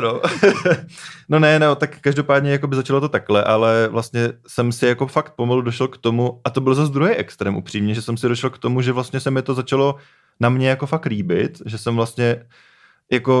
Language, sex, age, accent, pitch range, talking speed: Czech, male, 20-39, native, 110-130 Hz, 225 wpm